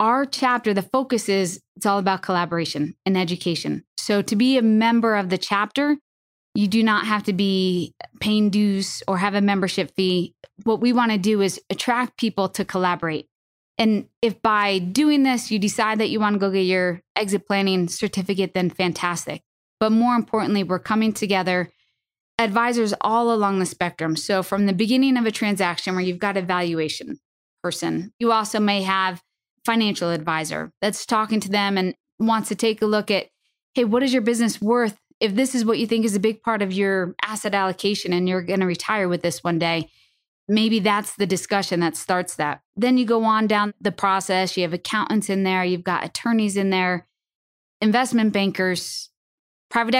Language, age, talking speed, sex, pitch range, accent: English, 20-39, 190 wpm, female, 185-220 Hz, American